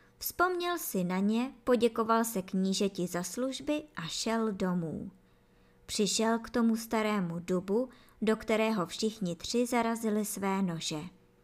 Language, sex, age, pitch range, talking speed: Czech, male, 20-39, 175-240 Hz, 125 wpm